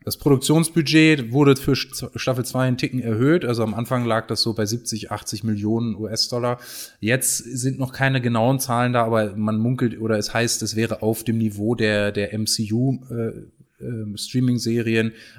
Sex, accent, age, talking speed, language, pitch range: male, German, 30-49, 170 wpm, German, 105-125 Hz